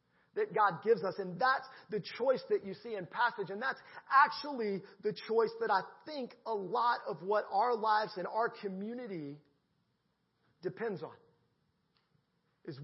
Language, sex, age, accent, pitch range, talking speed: English, male, 40-59, American, 155-210 Hz, 155 wpm